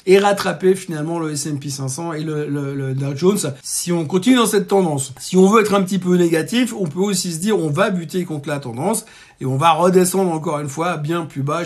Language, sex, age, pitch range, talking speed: French, male, 50-69, 150-195 Hz, 240 wpm